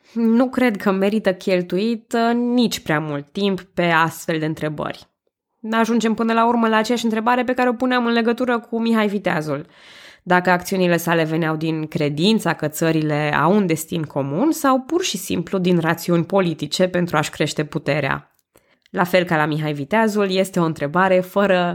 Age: 20-39